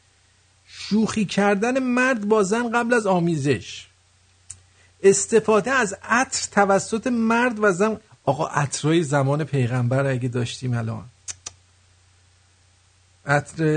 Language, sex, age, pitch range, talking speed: English, male, 50-69, 100-165 Hz, 100 wpm